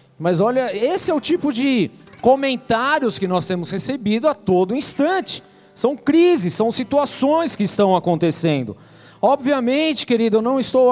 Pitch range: 210-265 Hz